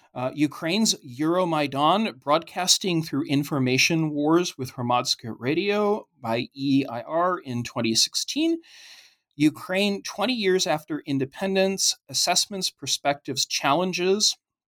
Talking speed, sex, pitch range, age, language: 90 wpm, male, 125-165 Hz, 40-59, English